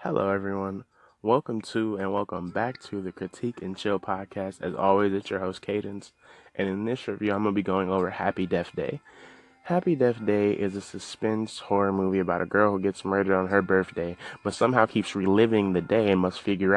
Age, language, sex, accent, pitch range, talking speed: 20-39, English, male, American, 95-105 Hz, 210 wpm